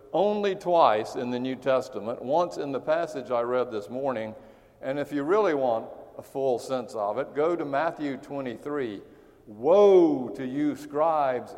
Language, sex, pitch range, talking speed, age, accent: English, male, 120-150 Hz, 165 wpm, 50-69, American